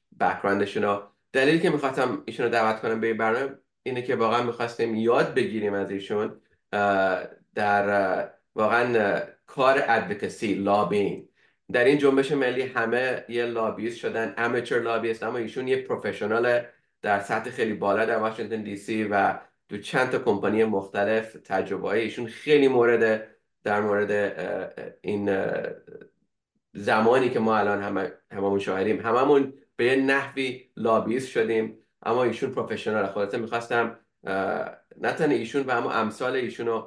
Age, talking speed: 30-49, 135 wpm